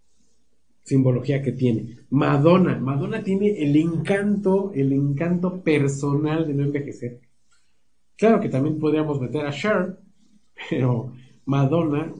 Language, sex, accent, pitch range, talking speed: Spanish, male, Mexican, 125-155 Hz, 115 wpm